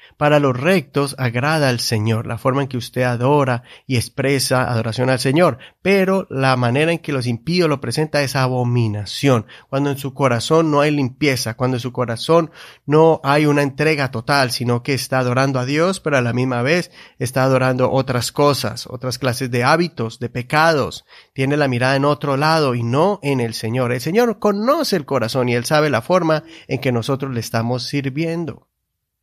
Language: English